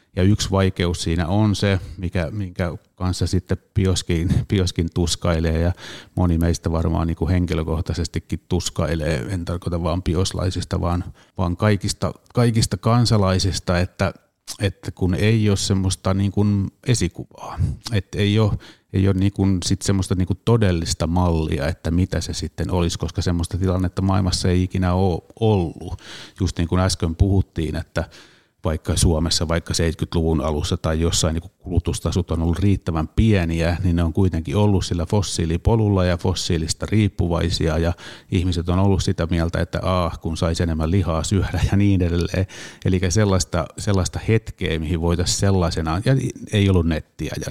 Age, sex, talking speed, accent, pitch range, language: 30-49, male, 150 wpm, native, 85-100 Hz, Finnish